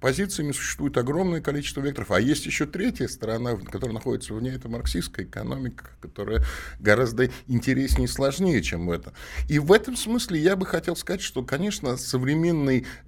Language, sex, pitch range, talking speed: Russian, male, 105-140 Hz, 160 wpm